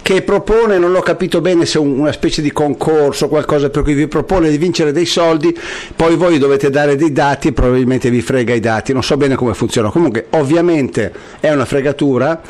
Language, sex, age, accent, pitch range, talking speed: Italian, male, 50-69, native, 125-160 Hz, 205 wpm